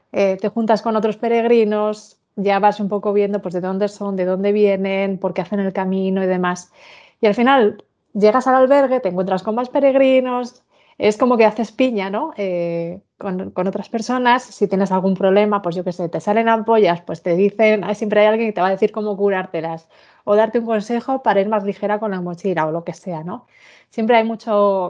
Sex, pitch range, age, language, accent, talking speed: female, 185-220 Hz, 30-49, Spanish, Spanish, 215 wpm